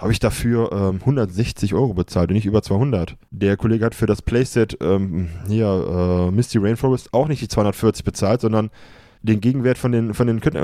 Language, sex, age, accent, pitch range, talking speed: German, male, 20-39, German, 105-135 Hz, 195 wpm